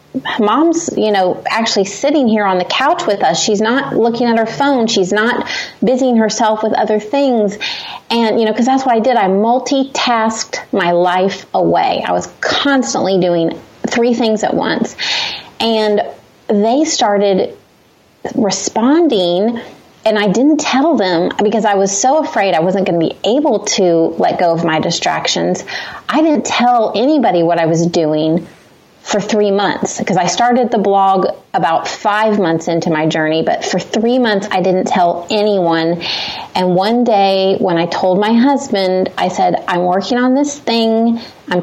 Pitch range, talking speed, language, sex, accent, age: 185-245 Hz, 170 wpm, English, female, American, 30-49